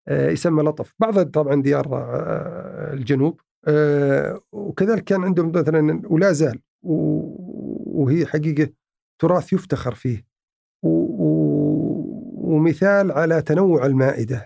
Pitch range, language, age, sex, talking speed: 140-180 Hz, Arabic, 50-69, male, 85 wpm